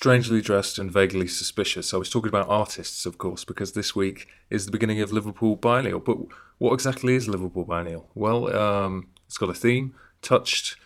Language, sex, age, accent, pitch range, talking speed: English, male, 30-49, British, 90-110 Hz, 190 wpm